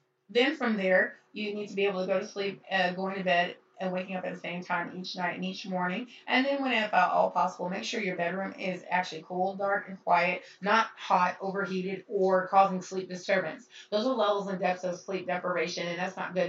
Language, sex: English, female